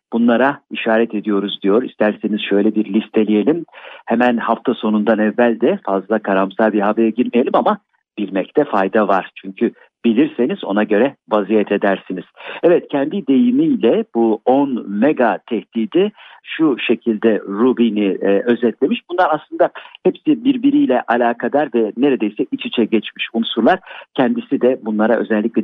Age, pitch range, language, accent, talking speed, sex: 50-69, 110-160 Hz, Turkish, native, 130 wpm, male